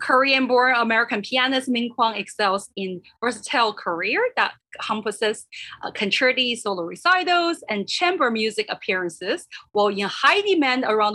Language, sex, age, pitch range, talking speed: English, female, 30-49, 205-295 Hz, 130 wpm